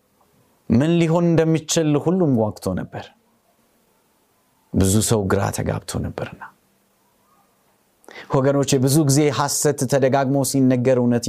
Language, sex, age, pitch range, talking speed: Amharic, male, 30-49, 115-150 Hz, 95 wpm